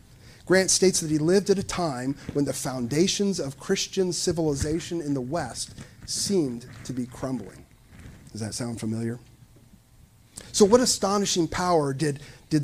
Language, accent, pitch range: English, American, 120-170 Hz